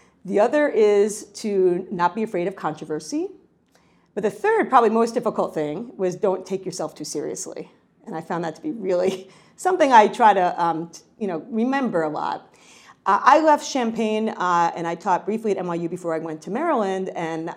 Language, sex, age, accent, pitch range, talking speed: English, female, 40-59, American, 165-235 Hz, 185 wpm